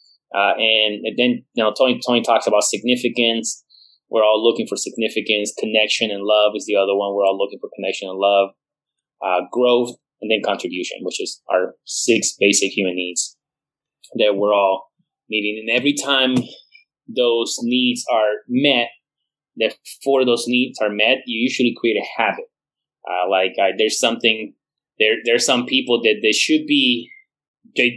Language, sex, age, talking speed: English, male, 20-39, 165 wpm